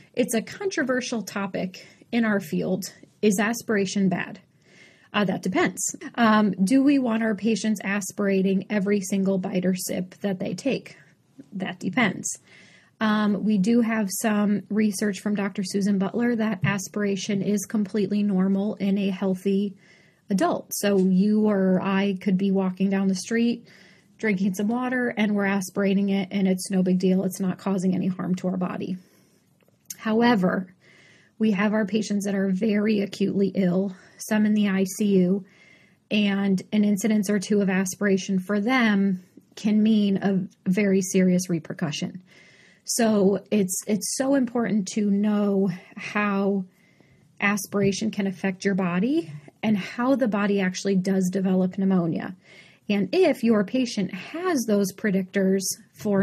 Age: 30-49